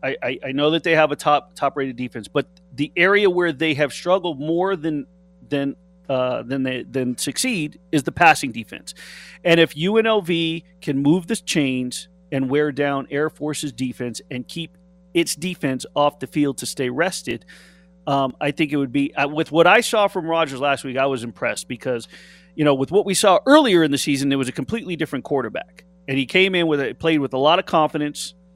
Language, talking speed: English, 210 wpm